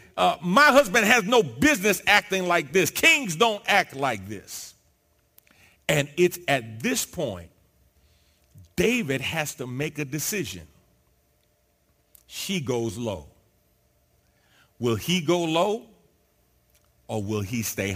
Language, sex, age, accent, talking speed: English, male, 40-59, American, 120 wpm